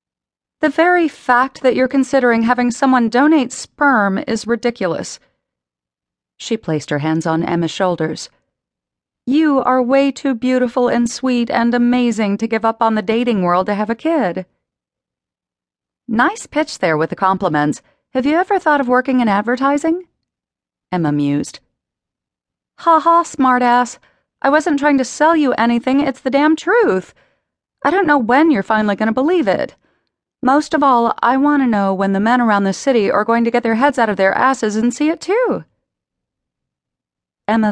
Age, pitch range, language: 40-59, 175-265 Hz, English